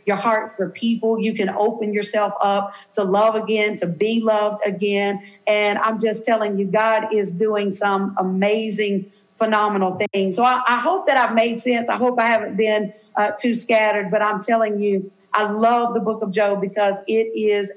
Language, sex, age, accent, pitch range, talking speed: English, female, 40-59, American, 195-220 Hz, 190 wpm